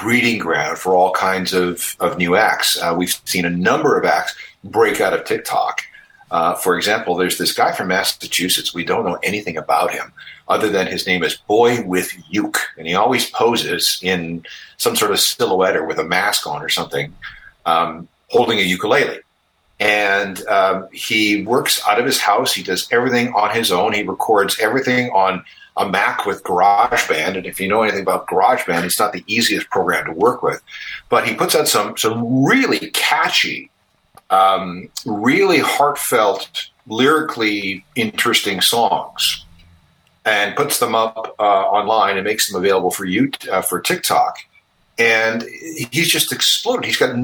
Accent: American